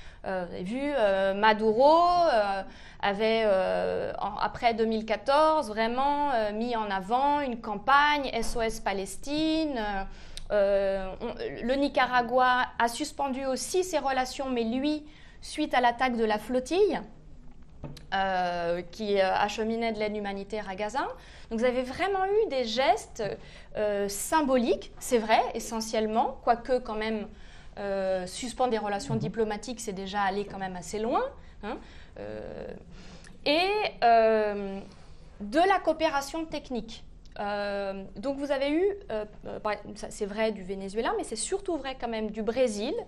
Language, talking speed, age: French, 140 wpm, 30-49